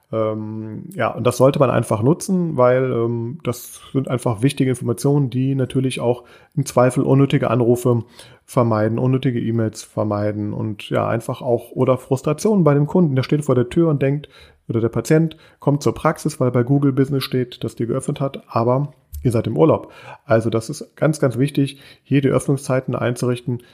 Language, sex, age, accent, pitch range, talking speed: German, male, 30-49, German, 120-145 Hz, 180 wpm